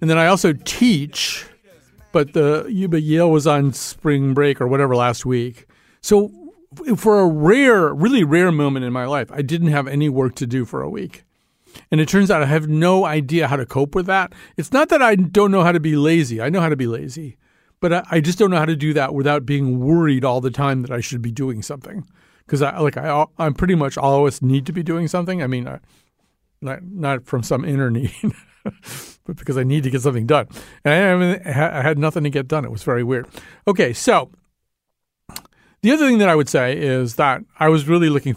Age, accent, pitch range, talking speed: 50-69, American, 130-170 Hz, 225 wpm